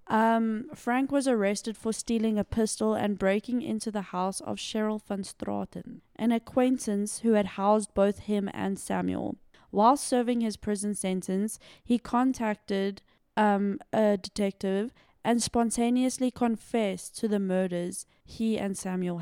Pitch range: 190-230 Hz